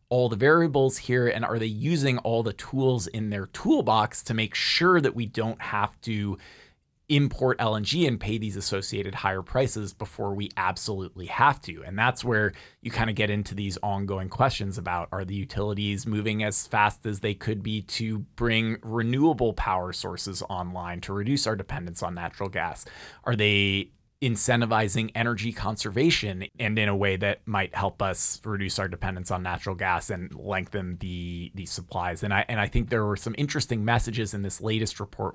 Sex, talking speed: male, 185 wpm